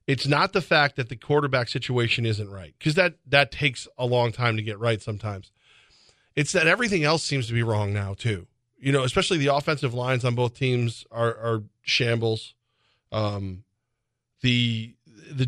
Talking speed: 180 wpm